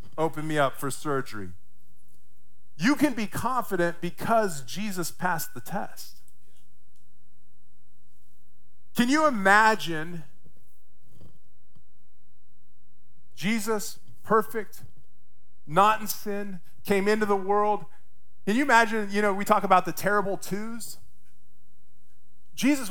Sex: male